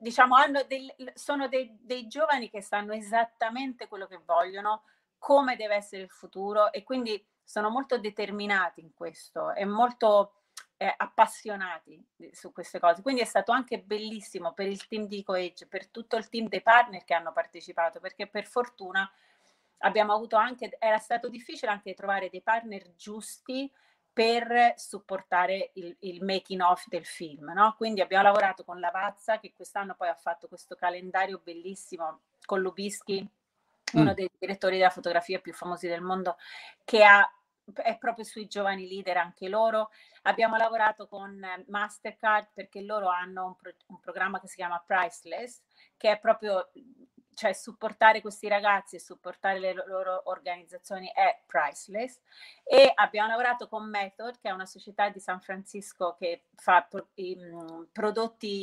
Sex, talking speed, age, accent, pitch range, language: female, 150 wpm, 40-59, native, 185-225 Hz, Italian